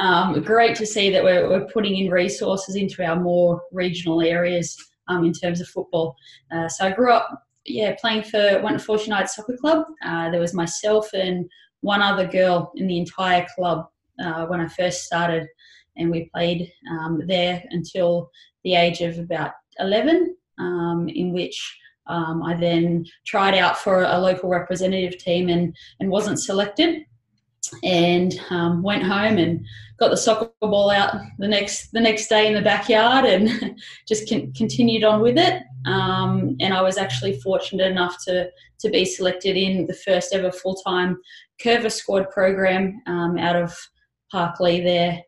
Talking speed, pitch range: 165 wpm, 170-200 Hz